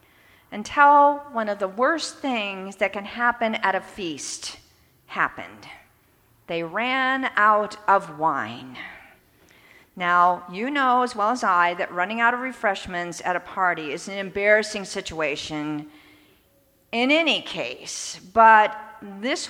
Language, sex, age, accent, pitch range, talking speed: English, female, 50-69, American, 180-250 Hz, 130 wpm